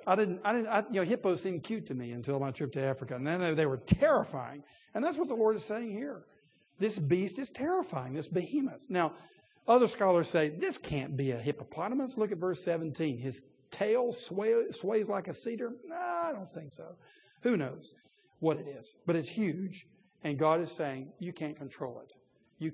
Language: English